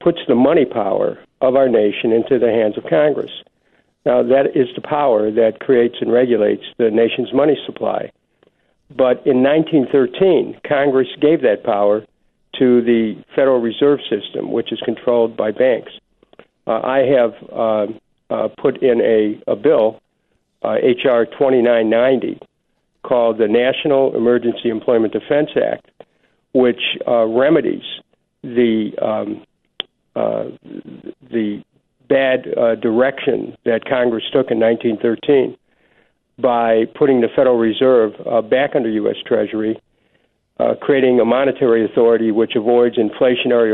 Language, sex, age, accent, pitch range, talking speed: English, male, 60-79, American, 110-130 Hz, 130 wpm